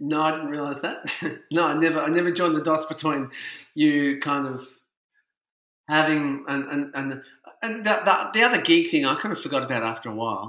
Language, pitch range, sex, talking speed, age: English, 125-155 Hz, male, 200 wpm, 40-59